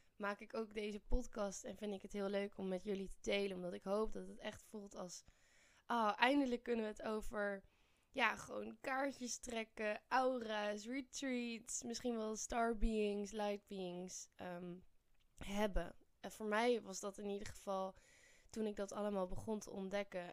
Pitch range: 190-225 Hz